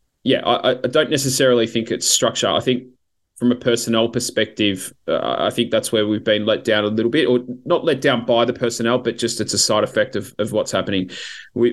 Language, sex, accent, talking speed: English, male, Australian, 225 wpm